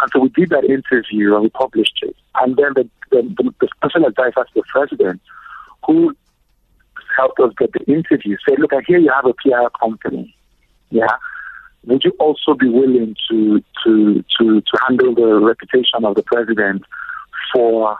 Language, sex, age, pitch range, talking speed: English, male, 50-69, 115-160 Hz, 170 wpm